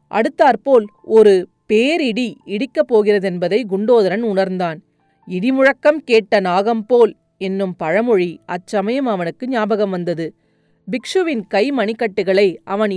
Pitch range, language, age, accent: 180-240 Hz, Tamil, 30-49, native